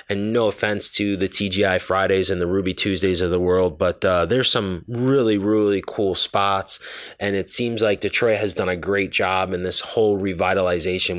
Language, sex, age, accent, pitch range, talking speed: English, male, 20-39, American, 90-105 Hz, 195 wpm